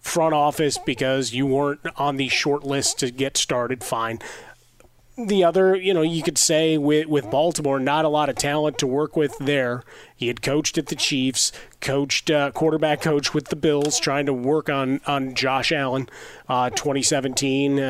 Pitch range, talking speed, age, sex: 130-155 Hz, 180 wpm, 30-49, male